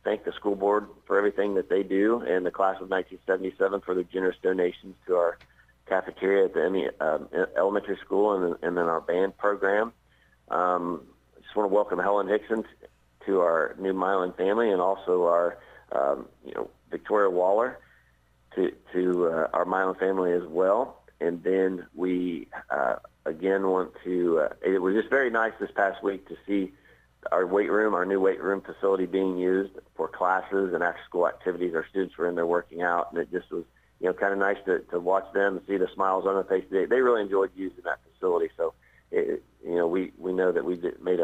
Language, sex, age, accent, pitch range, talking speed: English, male, 50-69, American, 85-95 Hz, 200 wpm